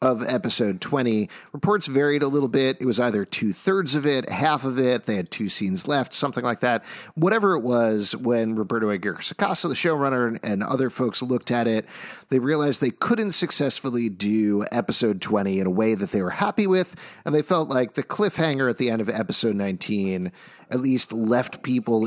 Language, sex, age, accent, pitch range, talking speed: English, male, 40-59, American, 110-150 Hz, 195 wpm